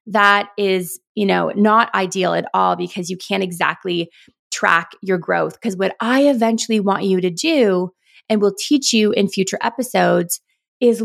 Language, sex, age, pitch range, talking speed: English, female, 20-39, 185-235 Hz, 170 wpm